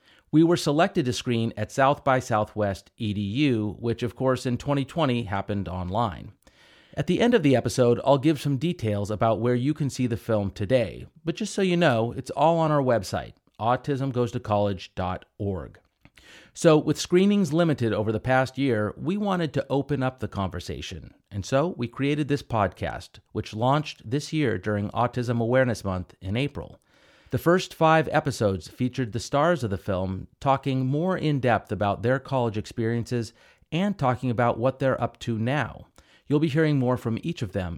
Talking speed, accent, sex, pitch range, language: 175 wpm, American, male, 105-145 Hz, English